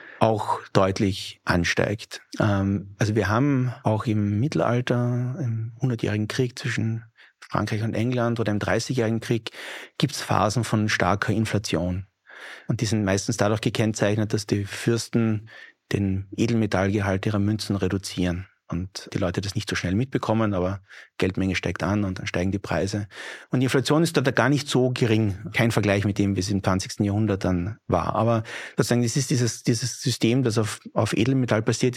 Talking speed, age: 165 wpm, 30-49